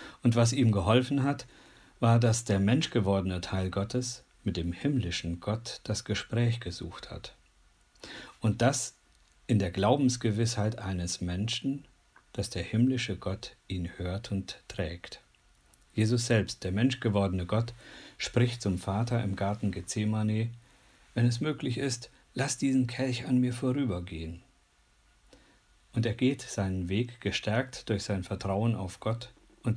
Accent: German